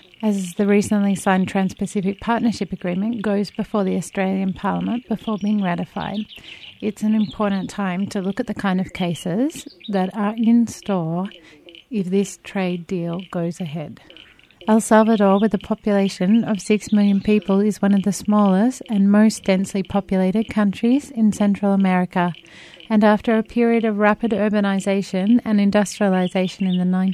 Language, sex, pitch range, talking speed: English, female, 185-220 Hz, 155 wpm